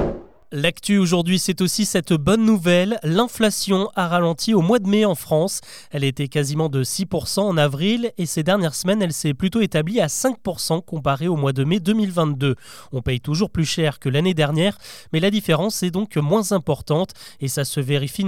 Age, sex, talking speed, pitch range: 20-39, male, 190 wpm, 150-195 Hz